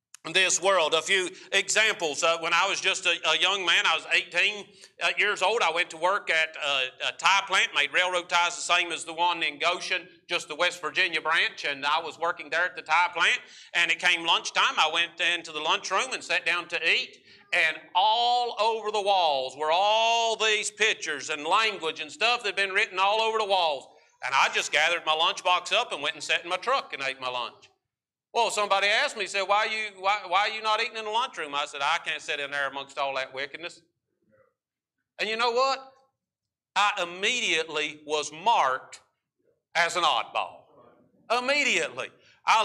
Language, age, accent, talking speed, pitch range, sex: English, 40-59, American, 205 wpm, 165-210 Hz, male